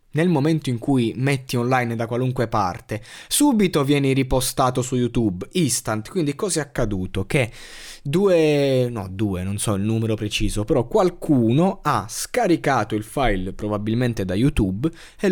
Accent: native